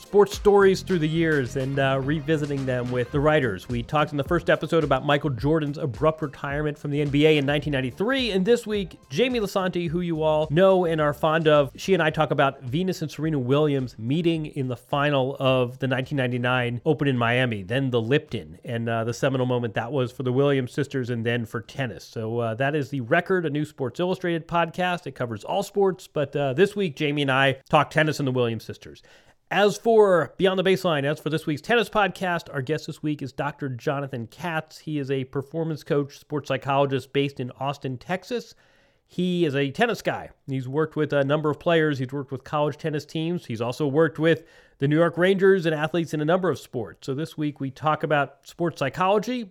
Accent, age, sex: American, 30-49, male